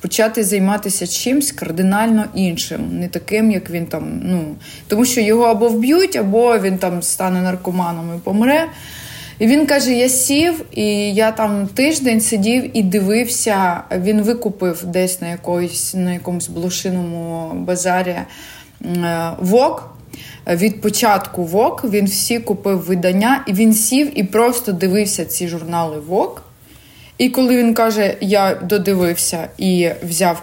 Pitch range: 175-220 Hz